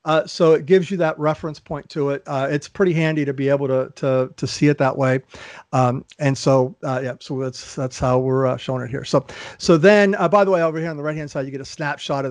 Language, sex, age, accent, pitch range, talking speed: English, male, 50-69, American, 140-160 Hz, 275 wpm